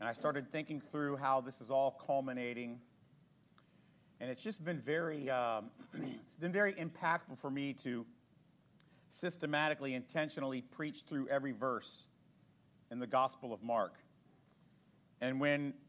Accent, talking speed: American, 125 wpm